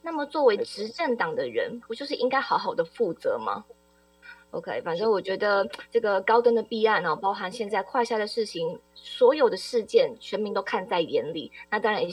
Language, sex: Chinese, female